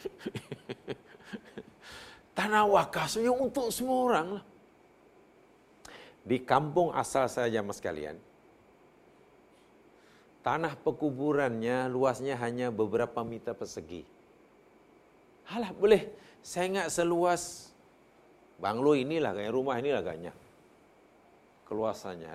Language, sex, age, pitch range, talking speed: Malayalam, male, 50-69, 120-175 Hz, 80 wpm